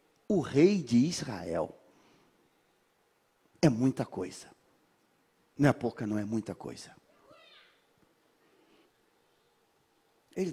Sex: male